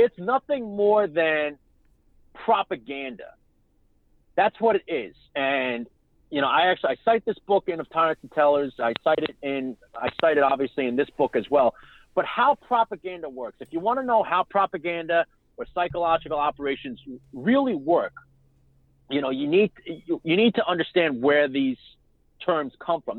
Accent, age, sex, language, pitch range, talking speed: American, 40-59, male, English, 135-195 Hz, 170 wpm